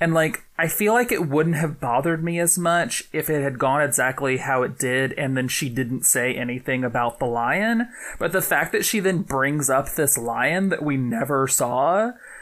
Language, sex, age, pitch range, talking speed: English, male, 20-39, 130-165 Hz, 210 wpm